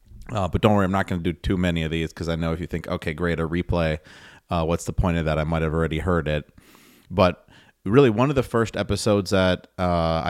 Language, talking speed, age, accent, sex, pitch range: English, 255 wpm, 30-49, American, male, 85-100 Hz